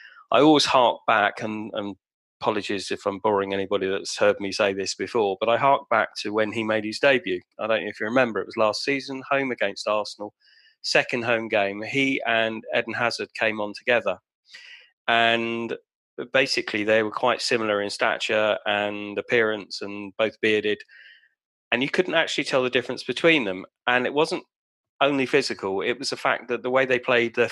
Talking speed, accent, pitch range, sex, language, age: 190 wpm, British, 105-125 Hz, male, English, 30-49